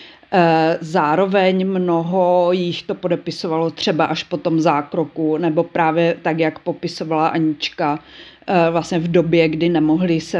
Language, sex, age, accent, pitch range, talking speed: Czech, female, 40-59, native, 160-180 Hz, 125 wpm